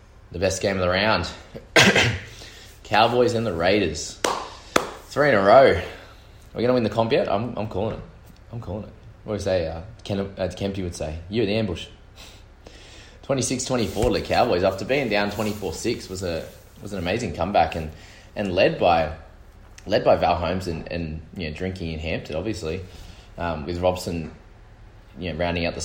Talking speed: 190 wpm